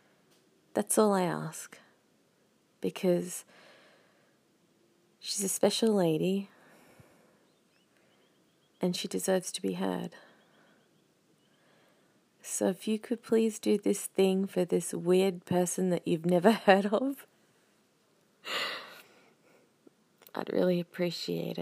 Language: English